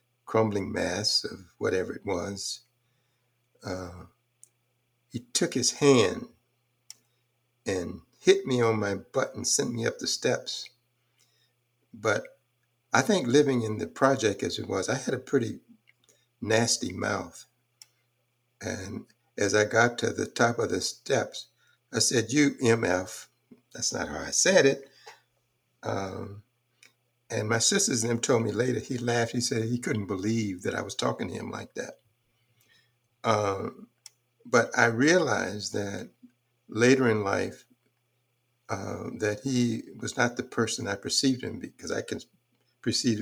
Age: 60-79